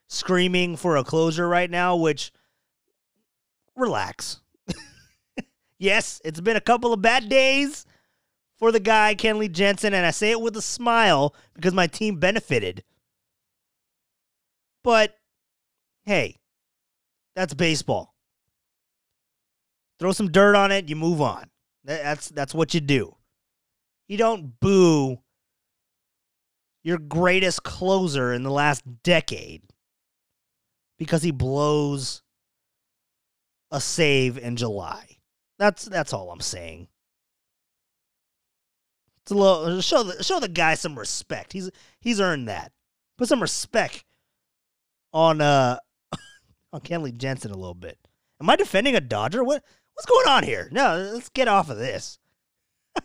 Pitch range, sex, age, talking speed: 140-215 Hz, male, 30-49, 125 wpm